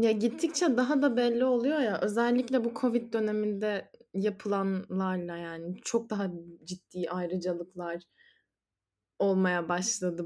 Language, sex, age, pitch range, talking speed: Turkish, female, 10-29, 195-255 Hz, 110 wpm